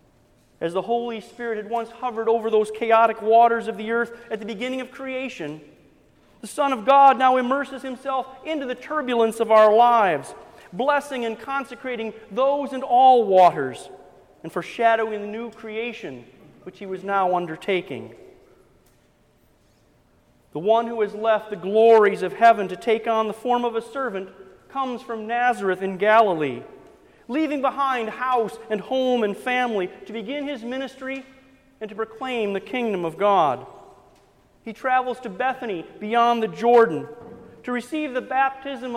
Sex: male